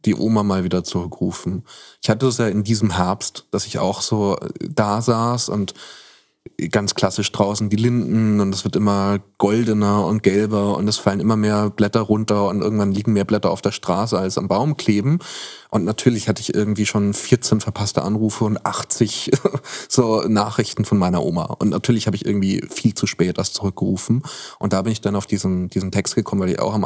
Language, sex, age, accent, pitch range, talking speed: German, male, 20-39, German, 95-110 Hz, 200 wpm